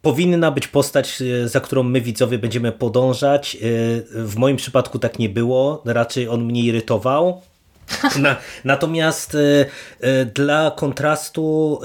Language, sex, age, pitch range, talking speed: Polish, male, 30-49, 115-140 Hz, 110 wpm